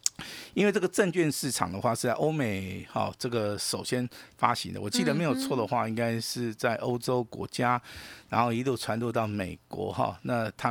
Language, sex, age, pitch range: Chinese, male, 50-69, 105-130 Hz